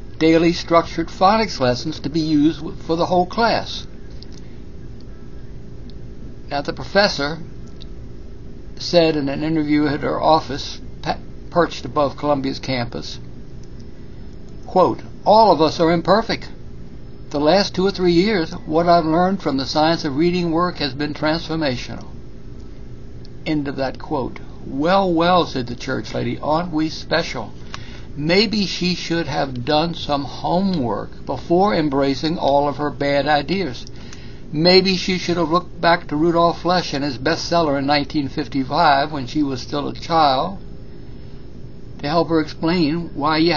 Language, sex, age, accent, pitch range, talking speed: English, male, 60-79, American, 145-175 Hz, 140 wpm